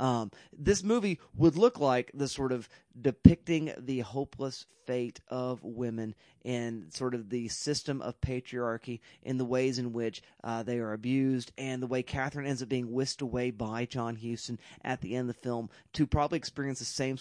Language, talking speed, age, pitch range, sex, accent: English, 190 wpm, 30-49, 125-155 Hz, male, American